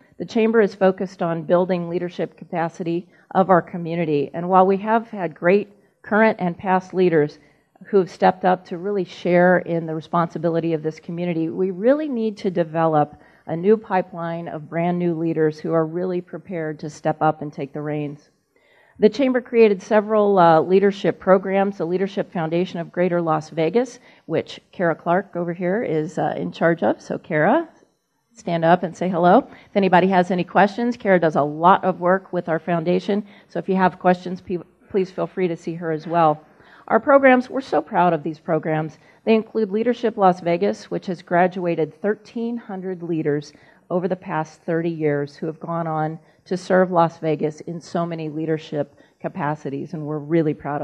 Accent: American